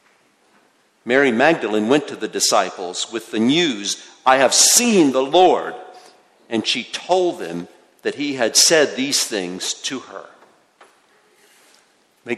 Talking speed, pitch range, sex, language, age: 130 wpm, 110-160 Hz, male, English, 50-69